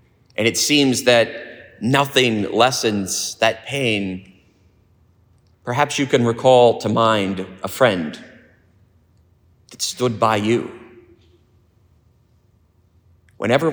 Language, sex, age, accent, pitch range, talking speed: English, male, 30-49, American, 95-115 Hz, 90 wpm